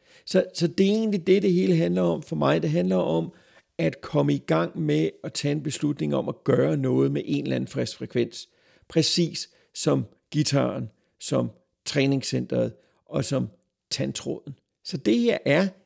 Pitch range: 125-170 Hz